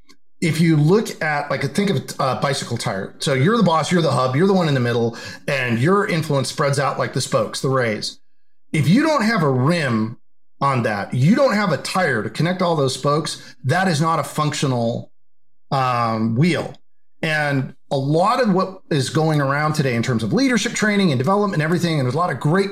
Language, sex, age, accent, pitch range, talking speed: English, male, 40-59, American, 135-195 Hz, 215 wpm